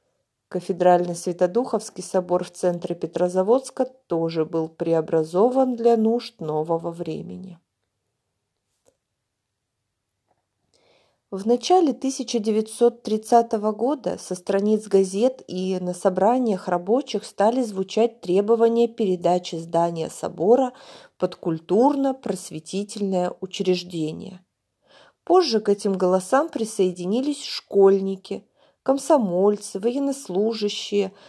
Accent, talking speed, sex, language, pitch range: native, 80 wpm, female, Russian, 180-240 Hz